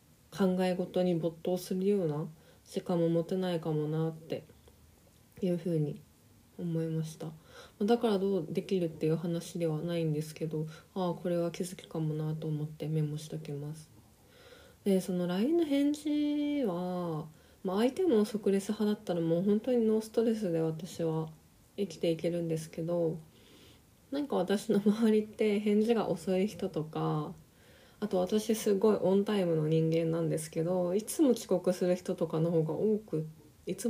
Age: 20-39